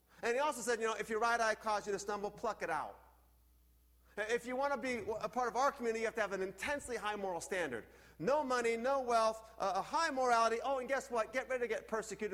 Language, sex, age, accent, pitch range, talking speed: English, male, 40-59, American, 190-290 Hz, 255 wpm